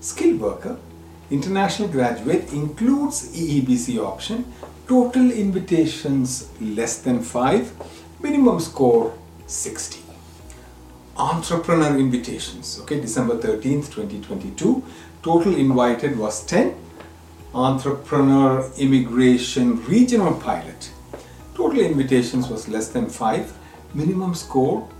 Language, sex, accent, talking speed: English, male, Indian, 95 wpm